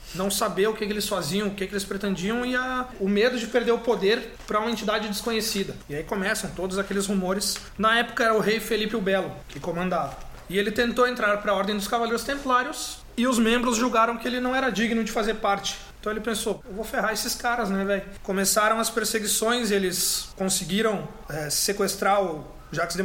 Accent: Brazilian